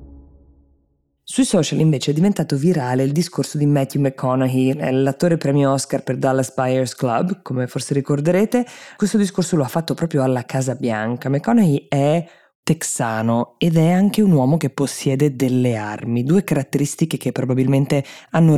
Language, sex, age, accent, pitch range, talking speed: Italian, female, 20-39, native, 130-160 Hz, 150 wpm